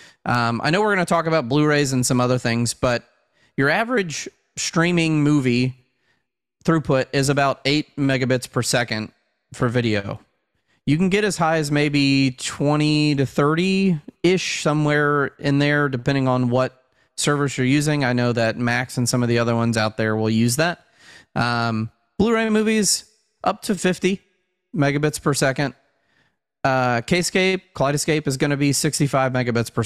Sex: male